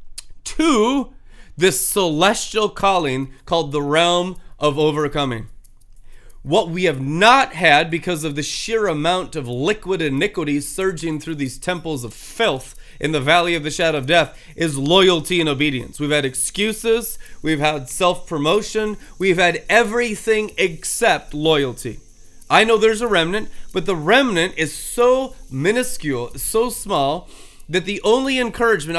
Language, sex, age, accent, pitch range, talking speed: English, male, 30-49, American, 145-190 Hz, 140 wpm